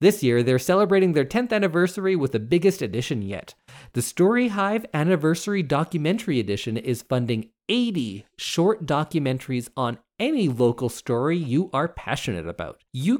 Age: 30-49